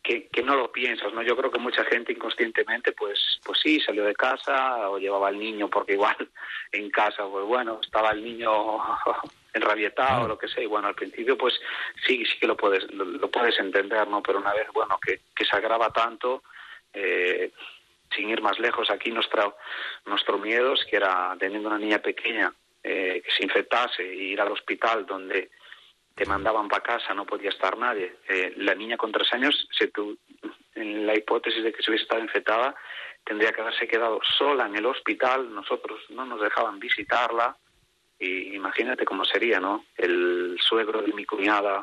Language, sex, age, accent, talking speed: Indonesian, male, 30-49, Spanish, 190 wpm